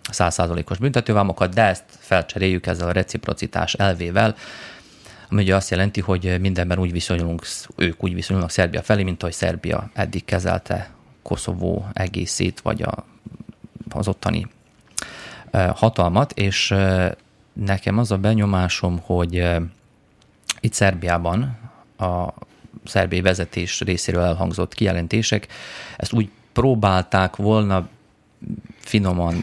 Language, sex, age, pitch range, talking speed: Hungarian, male, 30-49, 90-110 Hz, 105 wpm